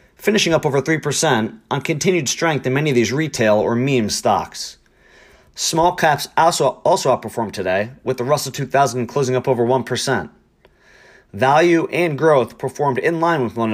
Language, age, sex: English, 30-49, male